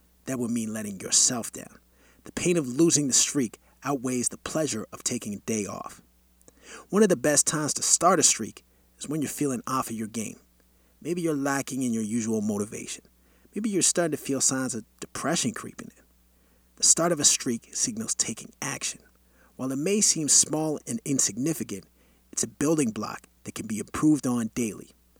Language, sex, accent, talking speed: English, male, American, 190 wpm